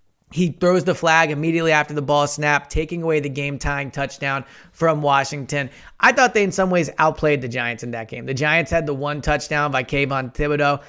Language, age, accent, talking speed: English, 30-49, American, 205 wpm